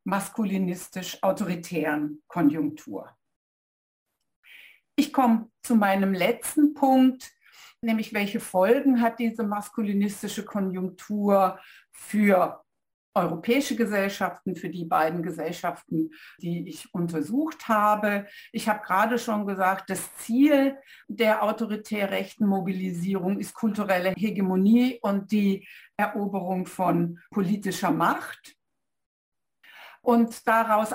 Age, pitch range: 60-79, 190-230 Hz